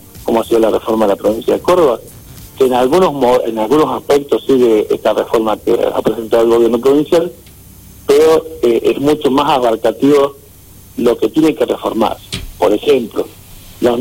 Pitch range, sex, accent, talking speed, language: 100-140 Hz, male, Argentinian, 165 wpm, Spanish